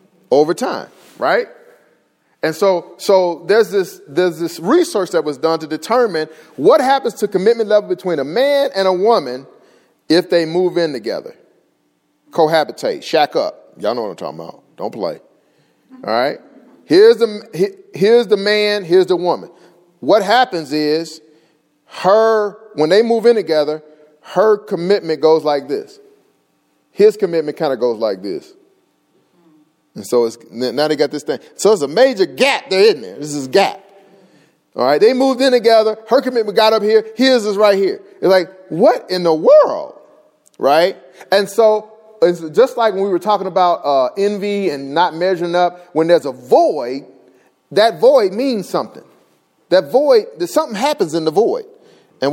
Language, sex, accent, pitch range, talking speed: English, male, American, 160-235 Hz, 170 wpm